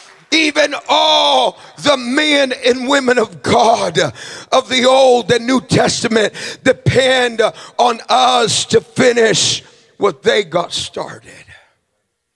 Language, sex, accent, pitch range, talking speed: English, male, American, 240-275 Hz, 110 wpm